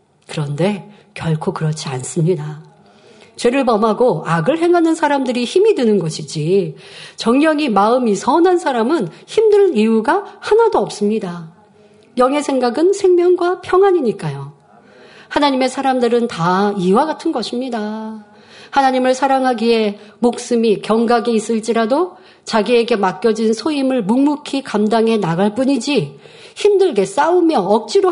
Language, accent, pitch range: Korean, native, 195-280 Hz